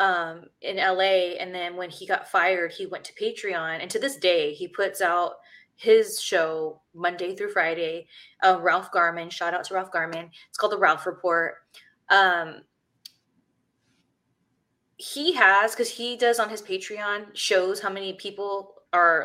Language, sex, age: English, female, 20-39